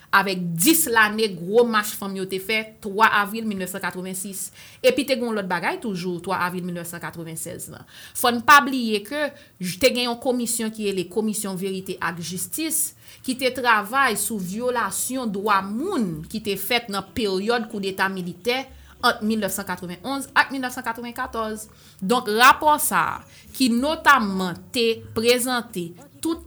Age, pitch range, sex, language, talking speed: 30-49, 190-240 Hz, female, French, 140 wpm